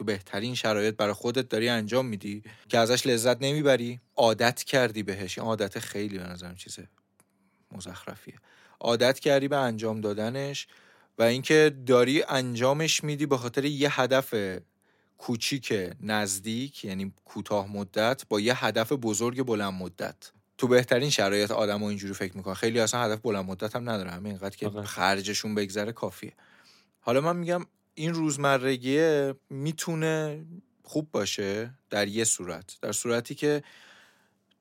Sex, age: male, 20-39